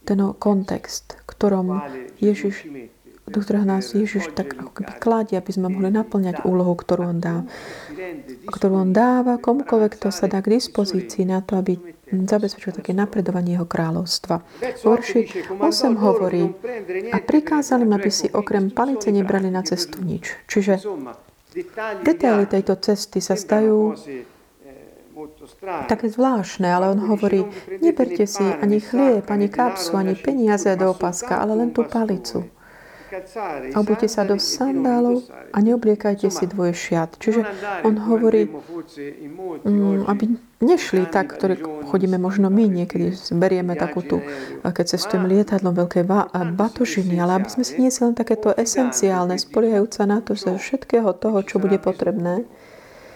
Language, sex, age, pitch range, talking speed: Slovak, female, 30-49, 185-225 Hz, 135 wpm